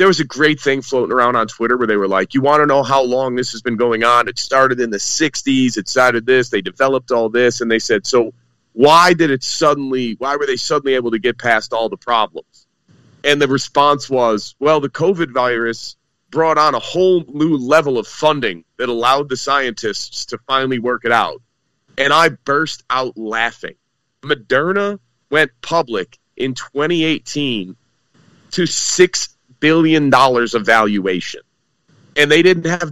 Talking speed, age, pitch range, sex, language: 180 wpm, 30-49, 125-165 Hz, male, English